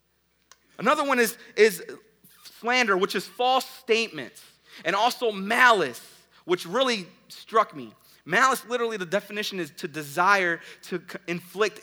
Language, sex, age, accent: English, male, 30-49, American